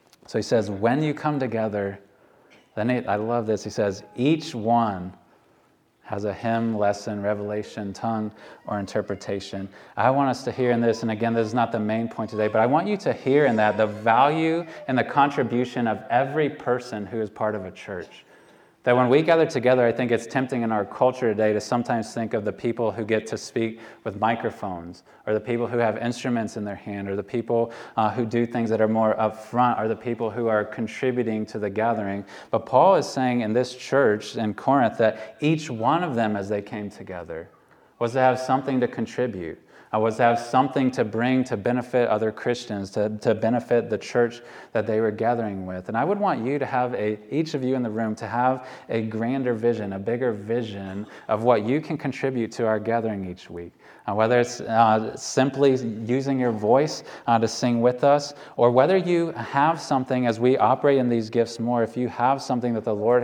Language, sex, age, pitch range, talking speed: English, male, 20-39, 110-125 Hz, 215 wpm